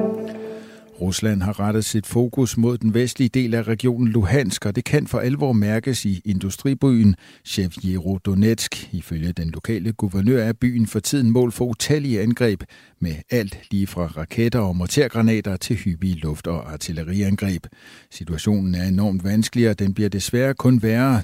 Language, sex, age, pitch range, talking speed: Danish, male, 60-79, 90-120 Hz, 160 wpm